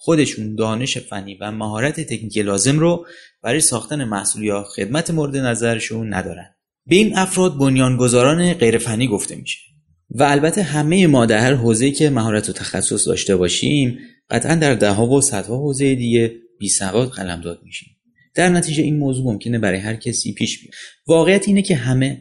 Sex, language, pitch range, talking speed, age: male, Persian, 110-150 Hz, 165 wpm, 30-49